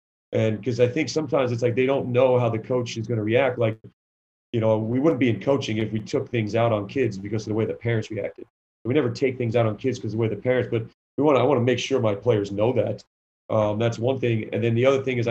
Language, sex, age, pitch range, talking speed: English, male, 40-59, 110-125 Hz, 290 wpm